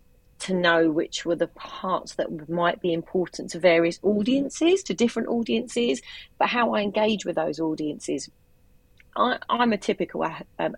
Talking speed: 150 wpm